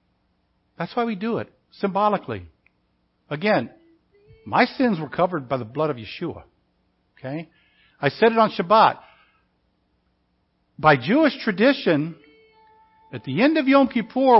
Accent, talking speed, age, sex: American, 130 wpm, 60-79, male